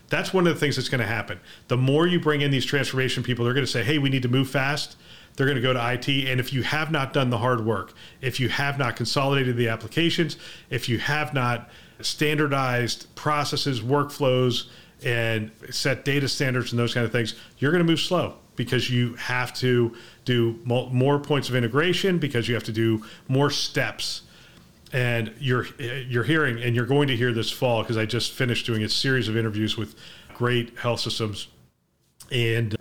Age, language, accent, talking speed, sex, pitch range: 40-59, English, American, 200 wpm, male, 115-140 Hz